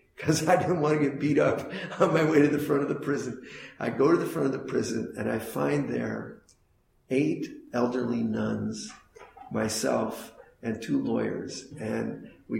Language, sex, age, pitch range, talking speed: English, male, 50-69, 110-135 Hz, 180 wpm